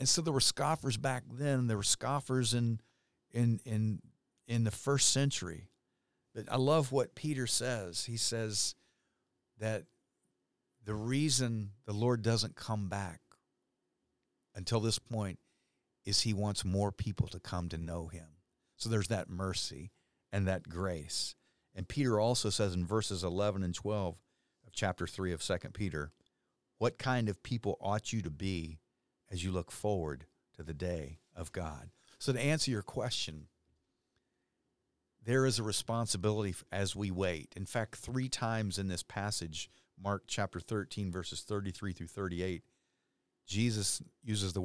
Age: 50-69